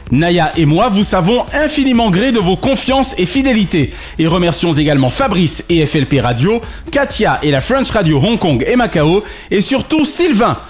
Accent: French